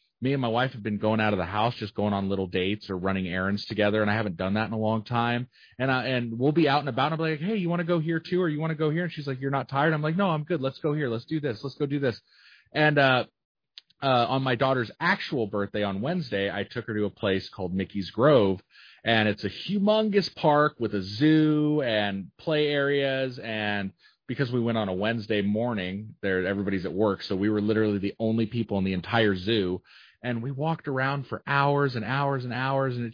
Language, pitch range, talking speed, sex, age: English, 100-135 Hz, 255 wpm, male, 30-49